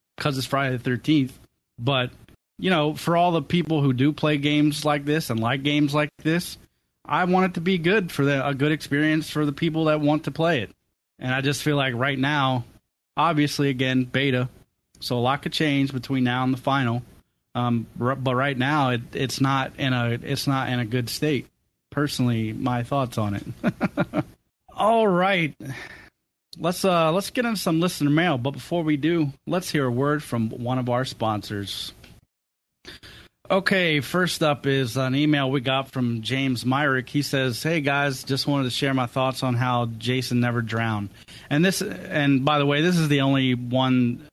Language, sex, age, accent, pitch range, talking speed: English, male, 30-49, American, 125-150 Hz, 190 wpm